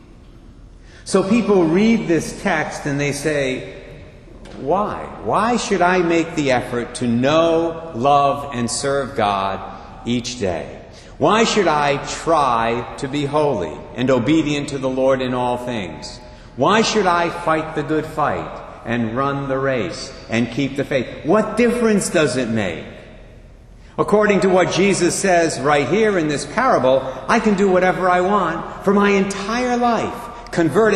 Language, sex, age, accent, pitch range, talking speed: English, male, 60-79, American, 120-180 Hz, 155 wpm